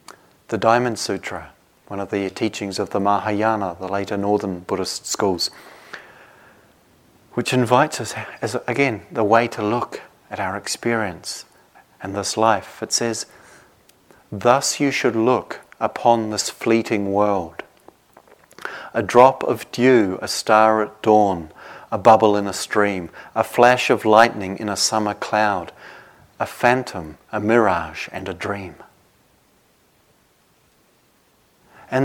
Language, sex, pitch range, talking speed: English, male, 105-140 Hz, 130 wpm